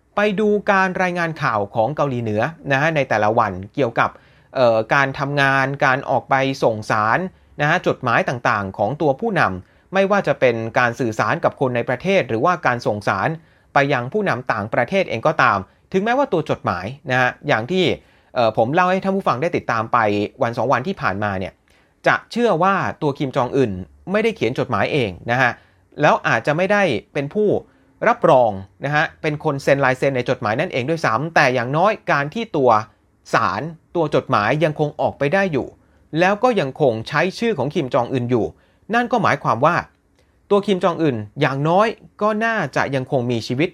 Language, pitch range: Thai, 125-185 Hz